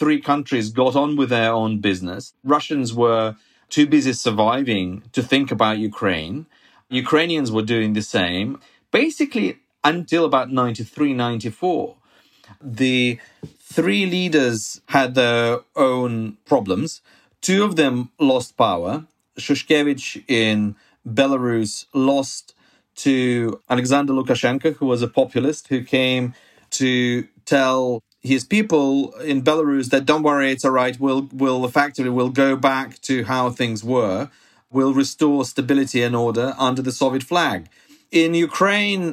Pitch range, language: 120-145 Hz, English